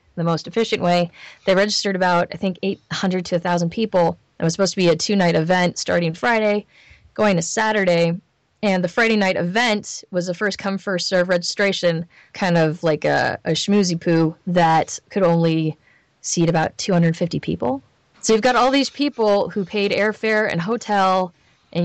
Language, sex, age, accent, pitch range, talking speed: English, female, 20-39, American, 170-200 Hz, 170 wpm